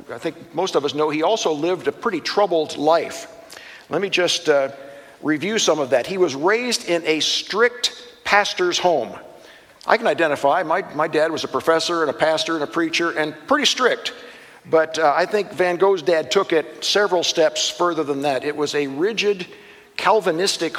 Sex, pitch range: male, 155-205 Hz